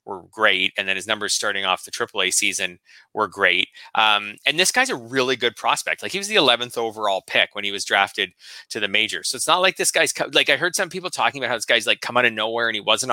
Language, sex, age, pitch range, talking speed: English, male, 30-49, 100-135 Hz, 275 wpm